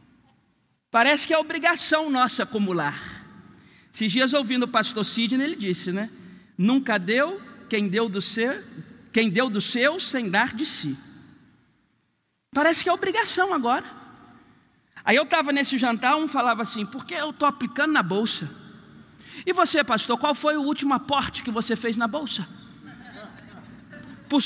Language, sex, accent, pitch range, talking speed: Portuguese, male, Brazilian, 230-320 Hz, 160 wpm